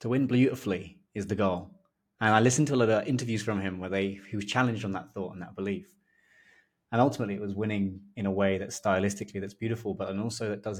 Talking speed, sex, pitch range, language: 245 wpm, male, 100-115 Hz, English